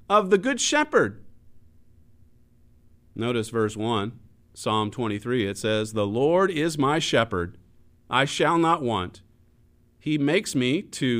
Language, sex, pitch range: English, male, 105-165 Hz